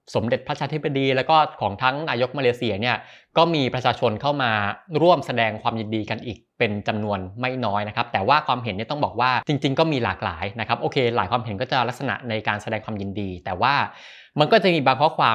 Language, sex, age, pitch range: Thai, male, 20-39, 110-140 Hz